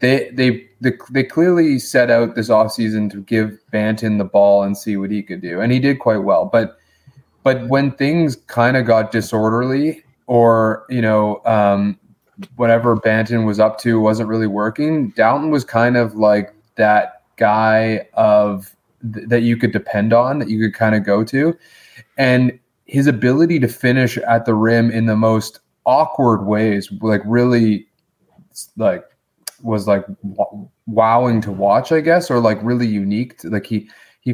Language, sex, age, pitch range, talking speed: English, male, 20-39, 105-125 Hz, 170 wpm